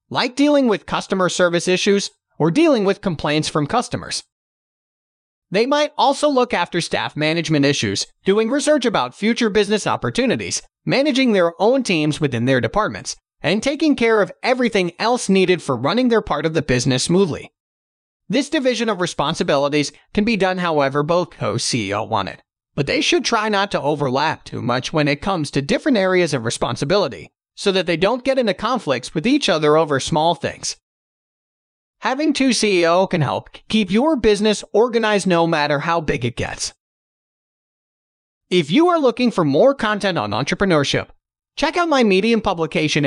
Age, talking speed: 30-49, 165 wpm